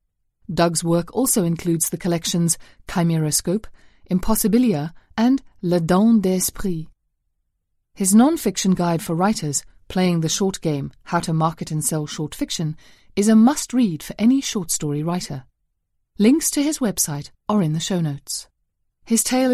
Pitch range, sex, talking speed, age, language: 160-230 Hz, female, 140 wpm, 30-49, English